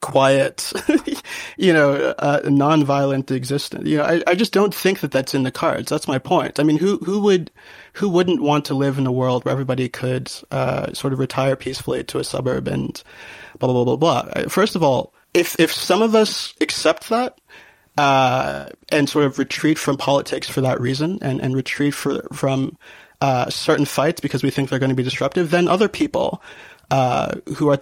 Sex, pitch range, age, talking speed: male, 130-155 Hz, 30-49, 205 wpm